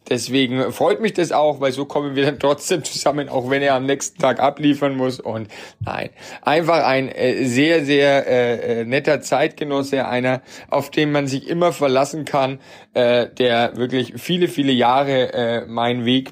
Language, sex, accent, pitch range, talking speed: German, male, German, 120-140 Hz, 170 wpm